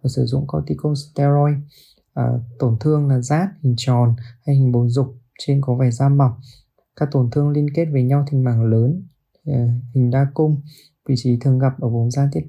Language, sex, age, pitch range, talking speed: Vietnamese, male, 20-39, 120-145 Hz, 195 wpm